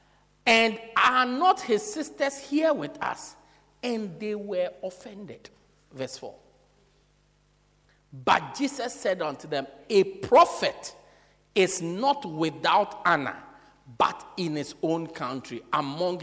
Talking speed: 115 wpm